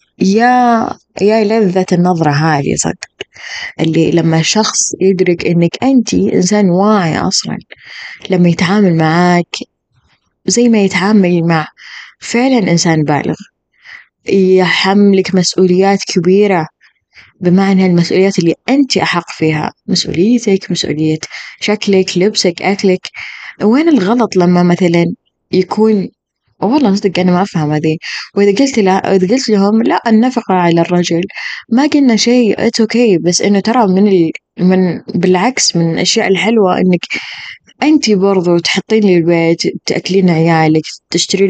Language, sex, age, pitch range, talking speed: Arabic, female, 20-39, 175-215 Hz, 115 wpm